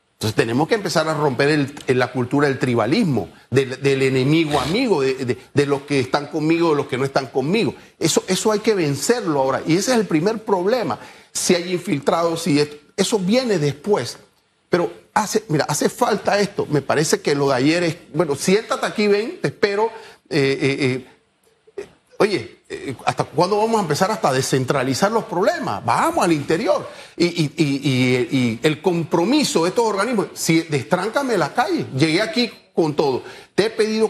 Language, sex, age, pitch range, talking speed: Spanish, male, 40-59, 145-210 Hz, 190 wpm